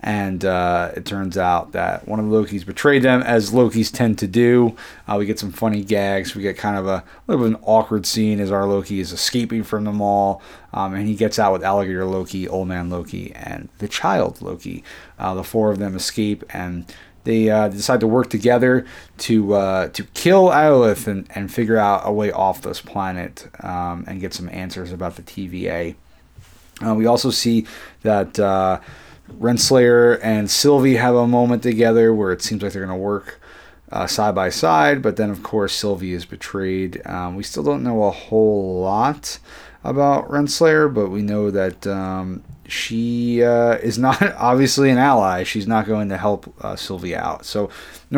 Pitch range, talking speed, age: 95-115 Hz, 195 wpm, 30-49